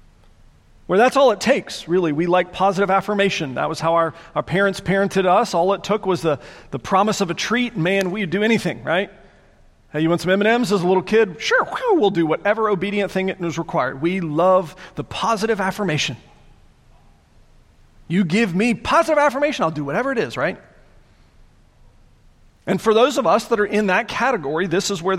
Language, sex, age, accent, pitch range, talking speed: English, male, 40-59, American, 145-195 Hz, 190 wpm